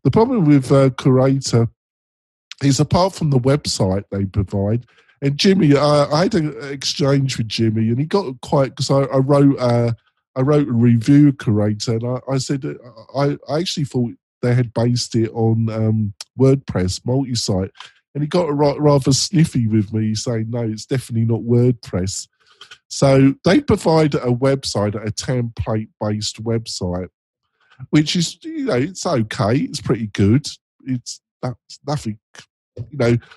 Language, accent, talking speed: English, British, 155 wpm